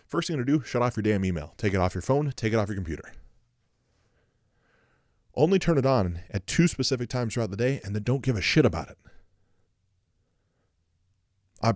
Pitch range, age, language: 95-130 Hz, 20-39, English